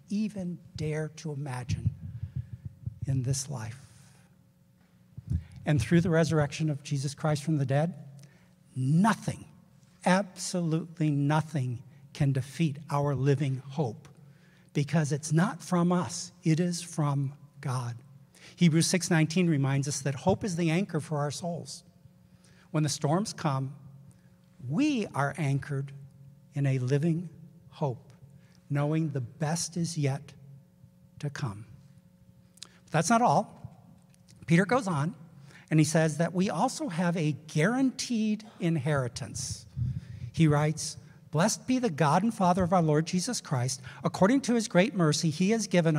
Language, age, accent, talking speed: English, 60-79, American, 130 wpm